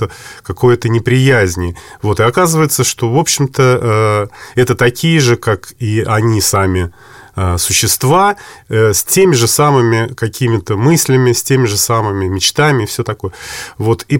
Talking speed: 130 wpm